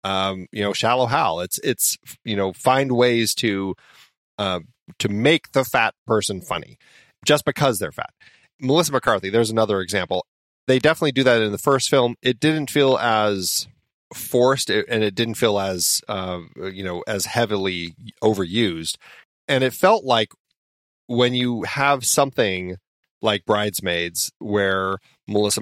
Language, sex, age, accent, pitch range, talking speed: English, male, 30-49, American, 100-130 Hz, 150 wpm